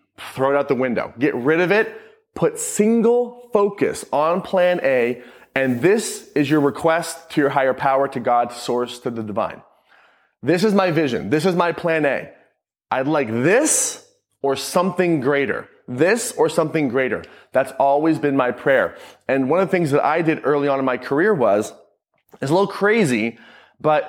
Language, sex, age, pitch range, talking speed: English, male, 30-49, 130-165 Hz, 180 wpm